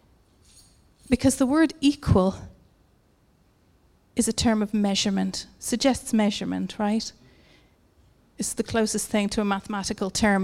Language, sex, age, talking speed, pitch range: English, female, 30-49, 115 wpm, 205-255 Hz